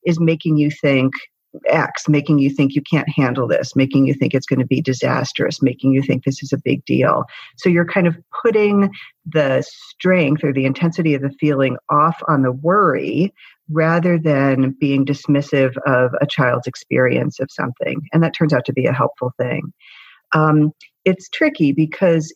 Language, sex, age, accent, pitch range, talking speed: English, female, 50-69, American, 140-165 Hz, 180 wpm